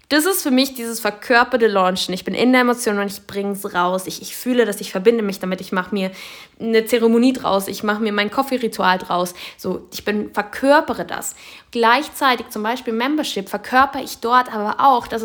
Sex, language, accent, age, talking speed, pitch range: female, German, German, 10-29, 210 wpm, 210-260 Hz